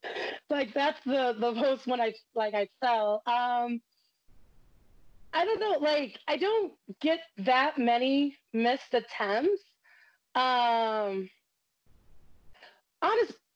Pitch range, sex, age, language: 225-290 Hz, female, 30-49, English